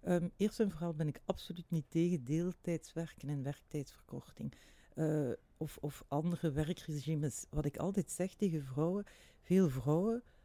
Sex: female